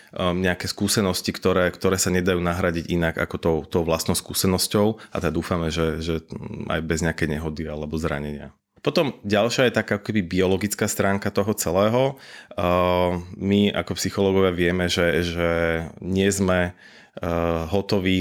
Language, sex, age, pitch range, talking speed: Slovak, male, 30-49, 85-95 Hz, 140 wpm